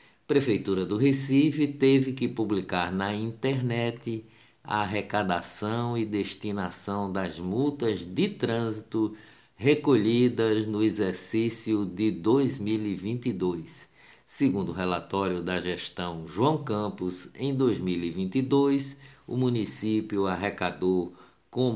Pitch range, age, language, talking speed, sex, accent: 95-120 Hz, 60-79, Portuguese, 95 wpm, male, Brazilian